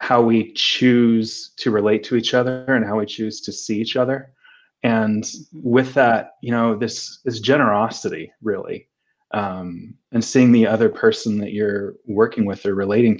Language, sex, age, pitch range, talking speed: English, male, 20-39, 105-120 Hz, 170 wpm